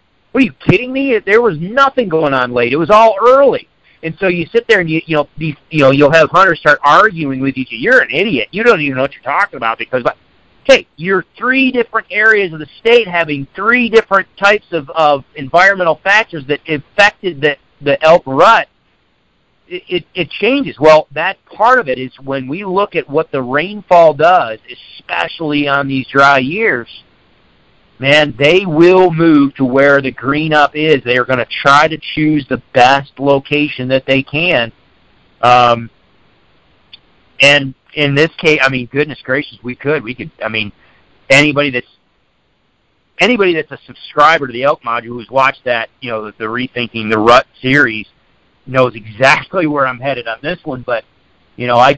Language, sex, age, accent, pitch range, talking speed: English, male, 50-69, American, 130-175 Hz, 185 wpm